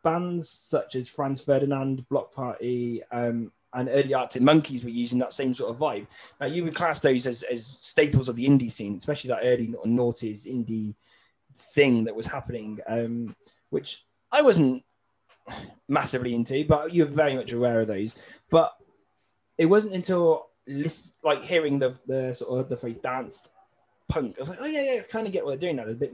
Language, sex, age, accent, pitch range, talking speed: English, male, 20-39, British, 115-150 Hz, 190 wpm